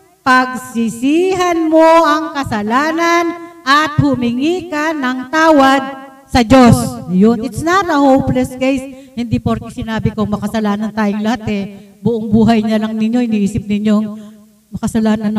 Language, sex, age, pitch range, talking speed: Filipino, female, 50-69, 235-310 Hz, 125 wpm